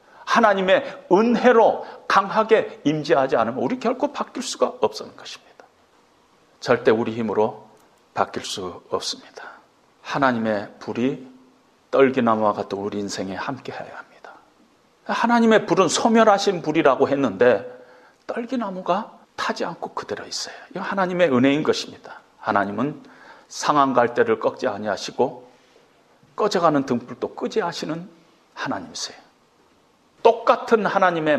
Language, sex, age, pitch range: Korean, male, 40-59, 170-265 Hz